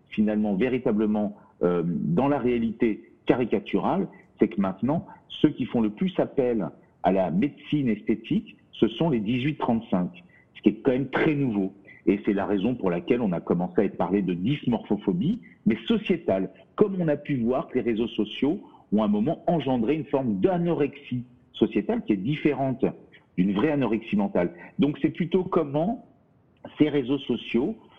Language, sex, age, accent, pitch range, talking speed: French, male, 50-69, French, 110-170 Hz, 165 wpm